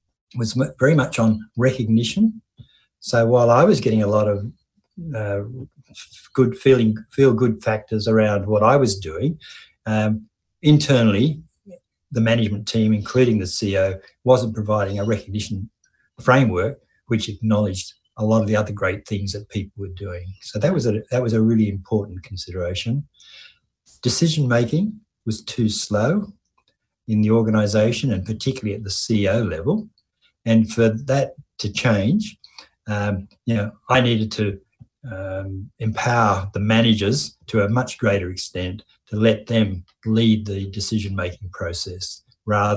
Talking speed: 140 wpm